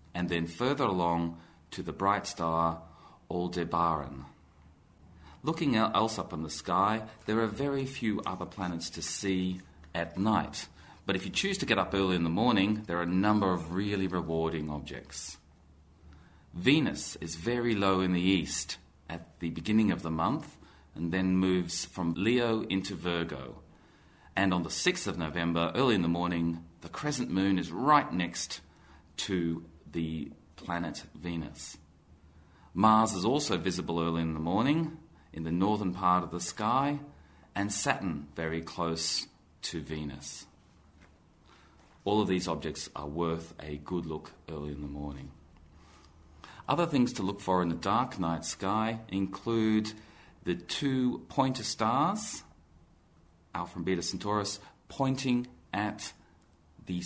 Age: 40-59